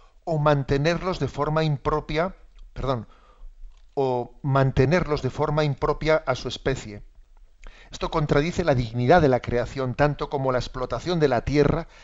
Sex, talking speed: male, 140 wpm